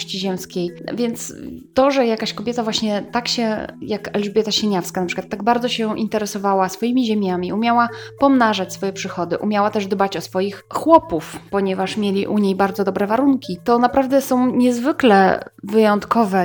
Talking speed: 155 wpm